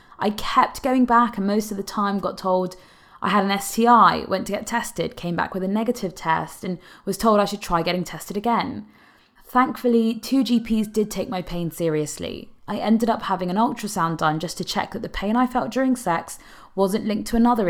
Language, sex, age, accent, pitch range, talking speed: English, female, 20-39, British, 175-235 Hz, 215 wpm